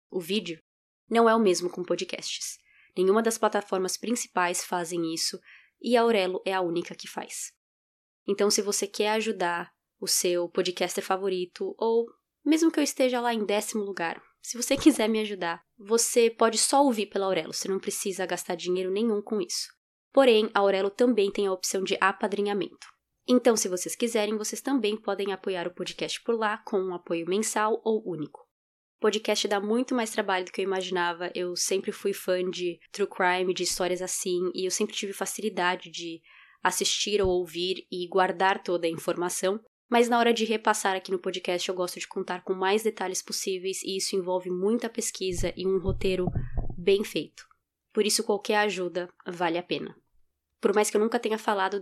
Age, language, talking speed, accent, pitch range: 20-39, Portuguese, 185 wpm, Brazilian, 180-215 Hz